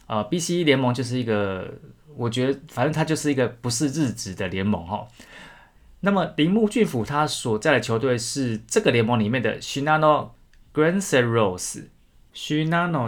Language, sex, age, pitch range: Chinese, male, 20-39, 105-135 Hz